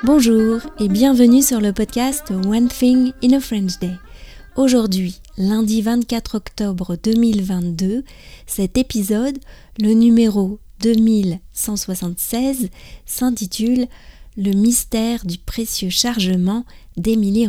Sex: female